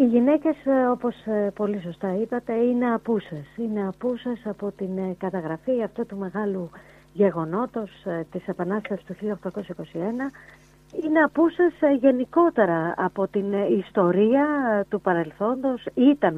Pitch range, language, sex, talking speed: 185-255 Hz, Greek, female, 110 wpm